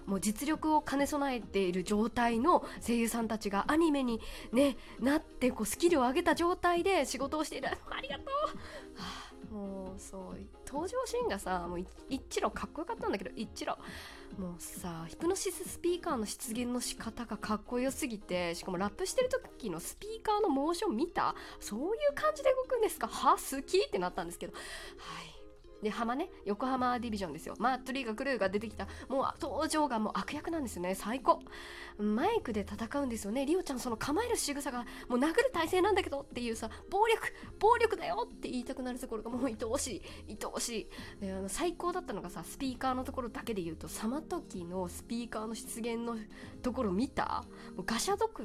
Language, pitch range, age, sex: Japanese, 210-315 Hz, 20-39, female